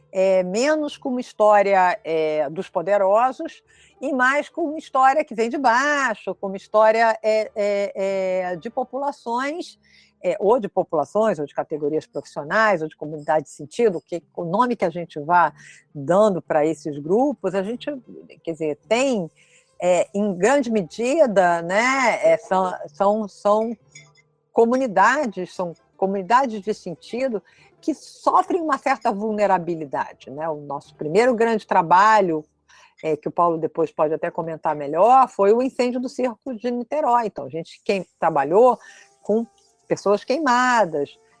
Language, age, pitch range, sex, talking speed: Portuguese, 50-69, 170-250 Hz, female, 140 wpm